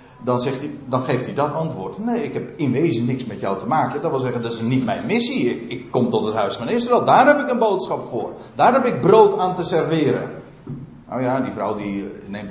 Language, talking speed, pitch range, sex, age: Dutch, 255 wpm, 160-235 Hz, male, 50-69